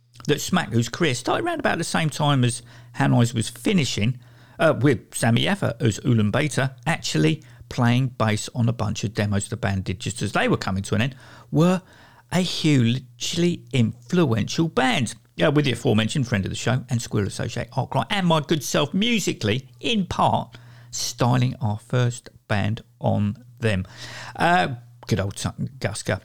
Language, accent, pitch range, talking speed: English, British, 115-155 Hz, 170 wpm